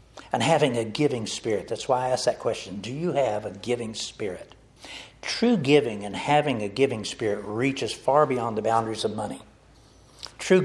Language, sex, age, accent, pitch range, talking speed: English, male, 60-79, American, 110-140 Hz, 180 wpm